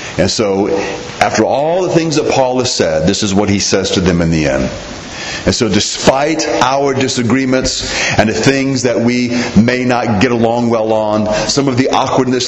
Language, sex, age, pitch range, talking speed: English, male, 40-59, 115-140 Hz, 190 wpm